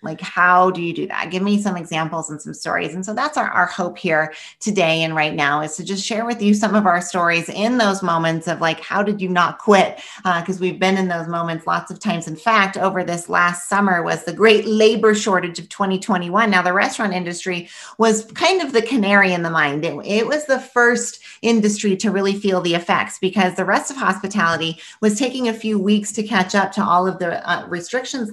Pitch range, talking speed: 170-205 Hz, 230 wpm